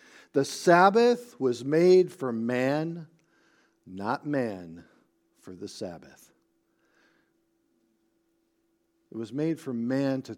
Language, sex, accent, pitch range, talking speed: English, male, American, 115-170 Hz, 100 wpm